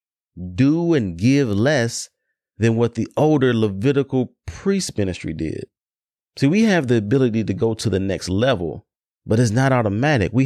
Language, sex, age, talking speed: English, male, 30-49, 160 wpm